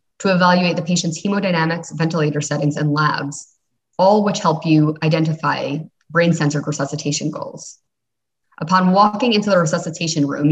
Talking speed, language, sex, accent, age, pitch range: 130 wpm, English, female, American, 20-39, 150-175 Hz